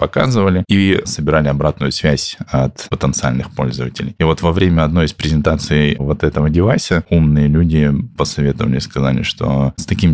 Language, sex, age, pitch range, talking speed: Russian, male, 20-39, 70-80 Hz, 150 wpm